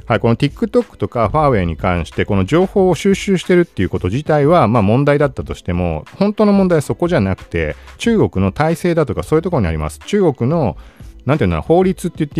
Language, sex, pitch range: Japanese, male, 90-155 Hz